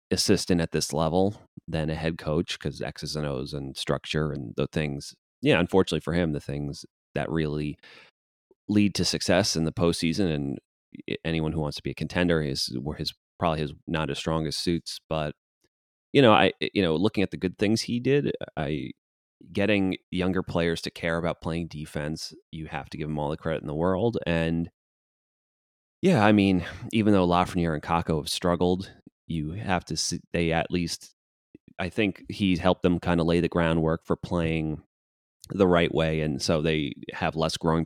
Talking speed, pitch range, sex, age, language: 190 wpm, 75-90 Hz, male, 30-49, English